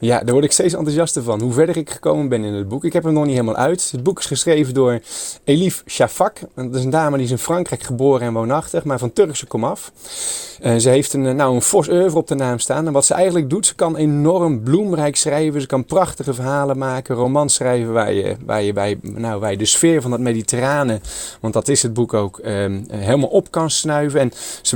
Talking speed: 240 wpm